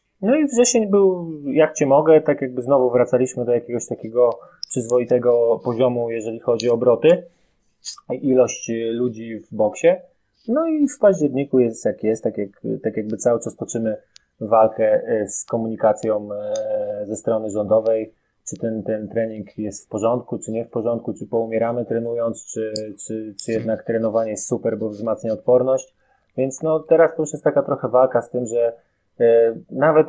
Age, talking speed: 20-39, 160 wpm